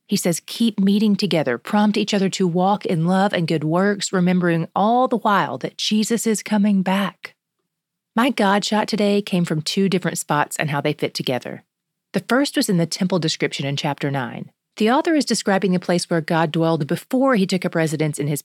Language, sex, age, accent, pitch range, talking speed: English, female, 30-49, American, 170-205 Hz, 210 wpm